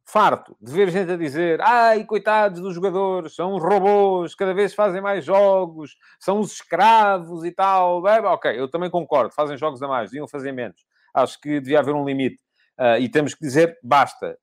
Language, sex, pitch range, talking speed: Portuguese, male, 150-205 Hz, 190 wpm